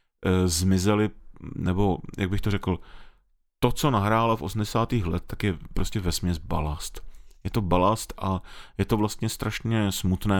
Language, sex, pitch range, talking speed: Czech, male, 95-110 Hz, 150 wpm